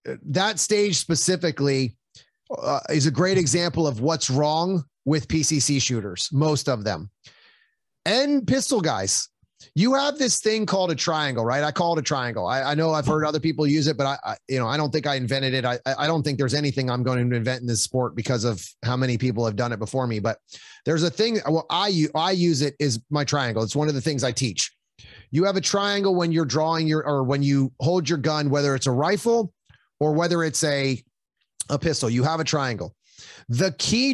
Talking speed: 220 wpm